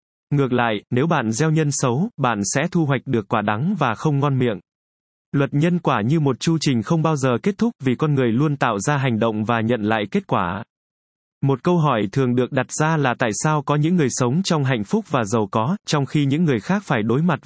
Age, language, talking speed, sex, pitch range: 20-39, Vietnamese, 245 wpm, male, 120-155 Hz